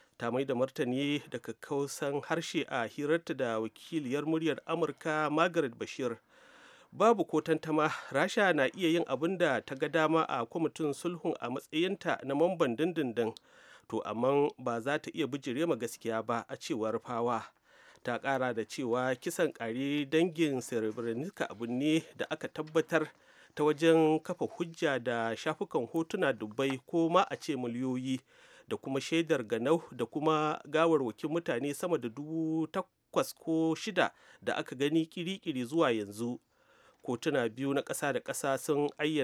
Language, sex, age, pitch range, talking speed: English, male, 40-59, 125-160 Hz, 145 wpm